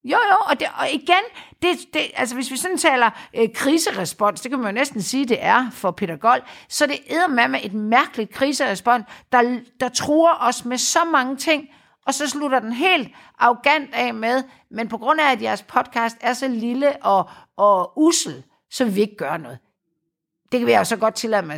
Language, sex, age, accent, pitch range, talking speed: Danish, female, 60-79, native, 210-290 Hz, 215 wpm